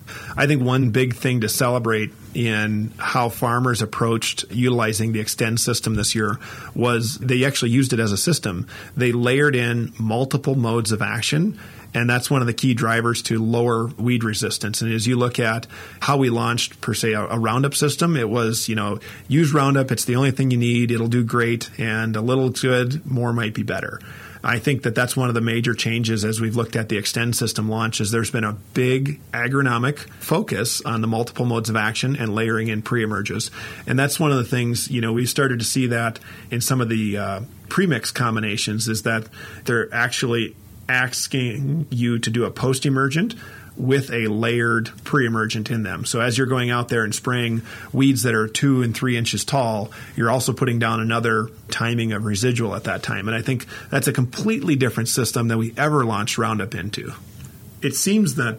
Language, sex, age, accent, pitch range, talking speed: English, male, 40-59, American, 110-130 Hz, 200 wpm